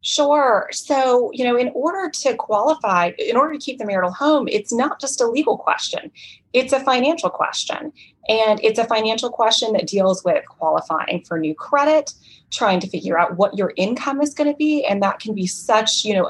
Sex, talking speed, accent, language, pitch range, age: female, 205 wpm, American, English, 190-250 Hz, 30-49